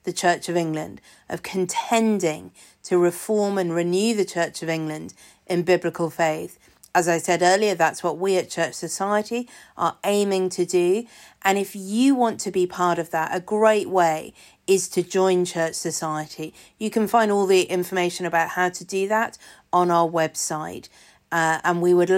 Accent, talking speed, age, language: British, 180 wpm, 40-59, English